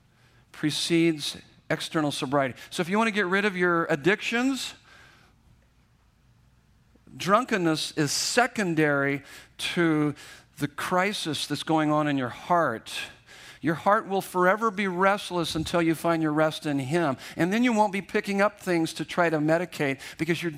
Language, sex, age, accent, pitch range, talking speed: English, male, 50-69, American, 150-195 Hz, 150 wpm